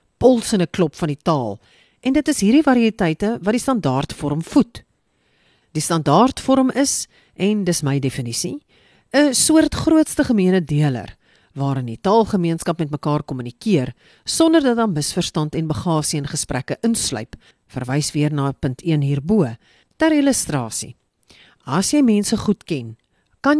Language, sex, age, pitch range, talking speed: English, female, 40-59, 135-225 Hz, 140 wpm